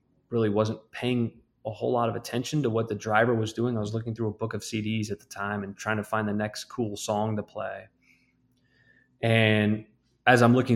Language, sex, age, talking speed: English, male, 20-39, 220 wpm